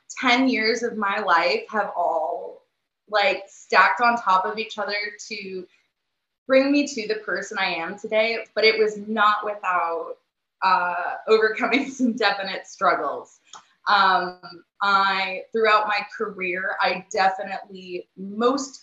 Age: 20-39